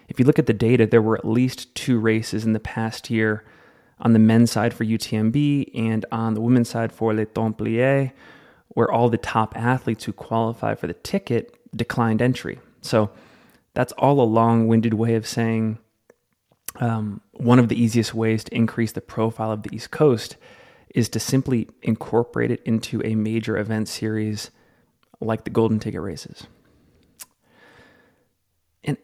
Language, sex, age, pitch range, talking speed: English, male, 30-49, 110-120 Hz, 165 wpm